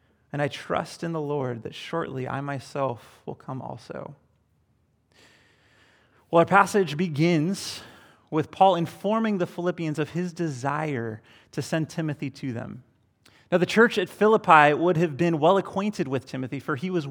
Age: 30-49